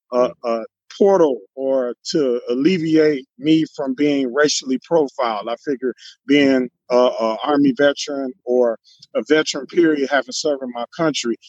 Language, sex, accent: English, male, American